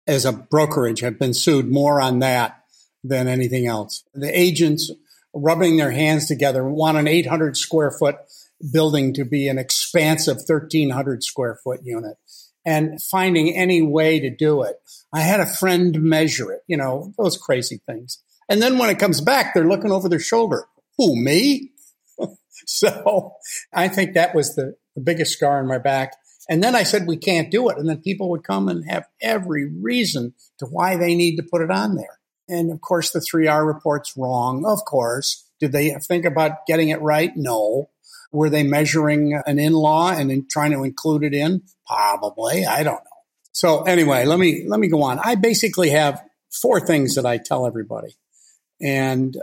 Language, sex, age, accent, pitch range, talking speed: English, male, 50-69, American, 140-175 Hz, 180 wpm